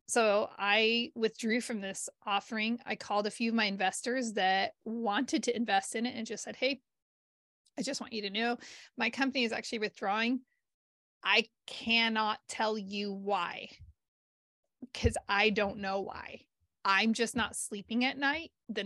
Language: English